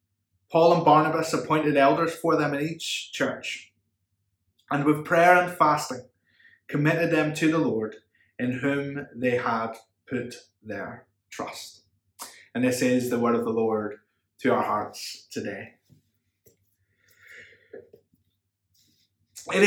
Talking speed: 120 wpm